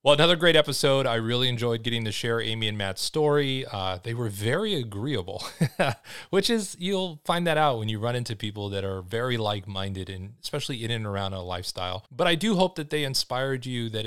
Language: English